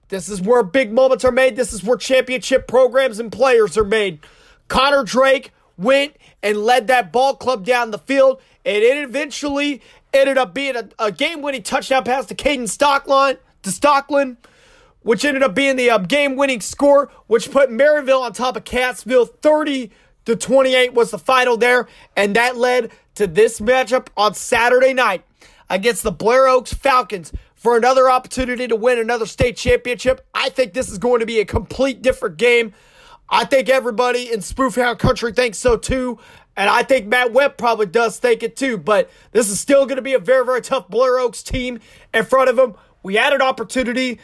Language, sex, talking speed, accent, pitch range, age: English, male, 185 wpm, American, 230-270 Hz, 30-49